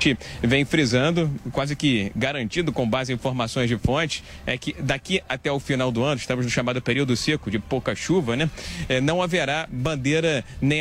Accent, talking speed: Brazilian, 185 wpm